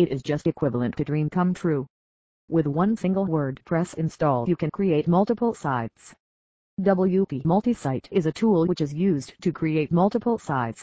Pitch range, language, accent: 140-190 Hz, English, American